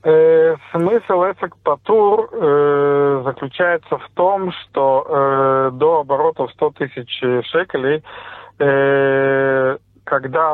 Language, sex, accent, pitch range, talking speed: Russian, male, native, 135-185 Hz, 80 wpm